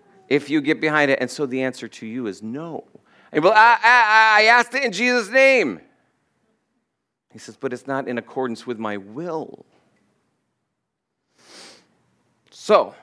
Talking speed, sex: 150 wpm, male